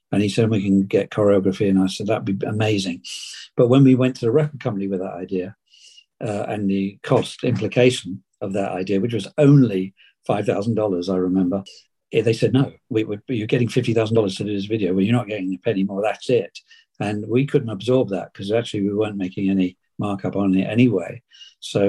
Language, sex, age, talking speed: English, male, 50-69, 200 wpm